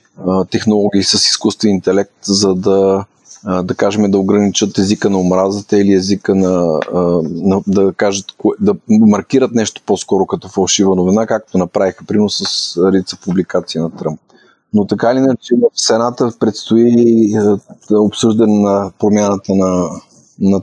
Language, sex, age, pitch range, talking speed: Bulgarian, male, 30-49, 95-110 Hz, 130 wpm